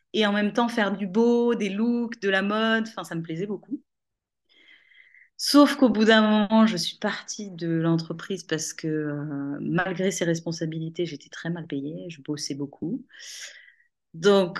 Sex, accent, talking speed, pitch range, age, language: female, French, 165 wpm, 160-210 Hz, 30-49, French